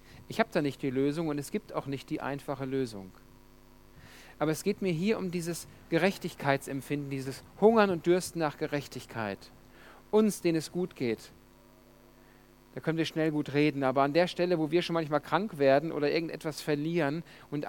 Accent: German